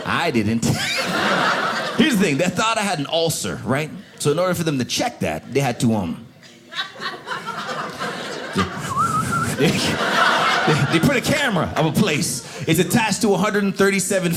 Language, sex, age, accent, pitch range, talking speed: English, male, 30-49, American, 140-210 Hz, 150 wpm